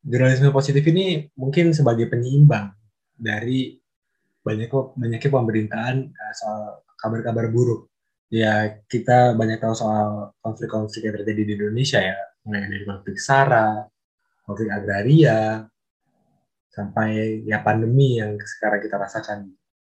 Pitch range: 105-130 Hz